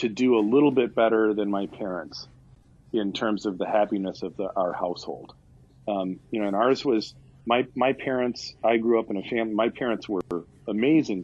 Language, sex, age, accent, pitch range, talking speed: English, male, 40-59, American, 95-120 Hz, 200 wpm